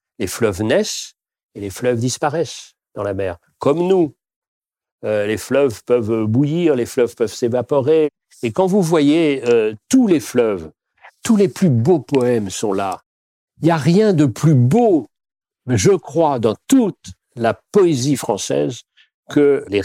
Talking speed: 155 wpm